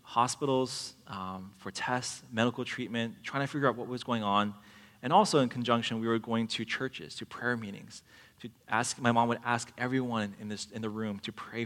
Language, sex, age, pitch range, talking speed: English, male, 20-39, 110-130 Hz, 205 wpm